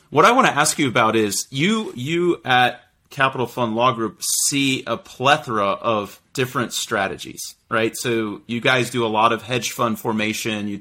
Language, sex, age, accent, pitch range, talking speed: English, male, 30-49, American, 110-135 Hz, 185 wpm